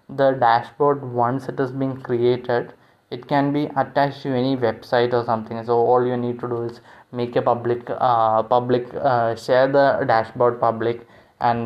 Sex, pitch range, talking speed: male, 115-130 Hz, 175 wpm